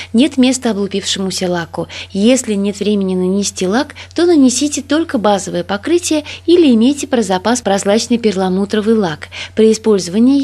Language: Russian